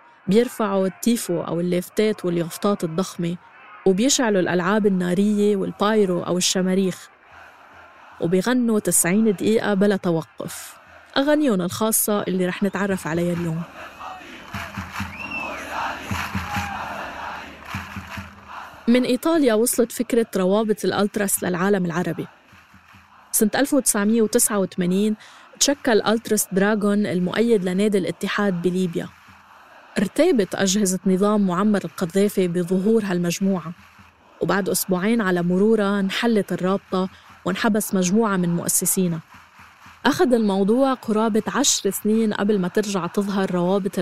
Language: Arabic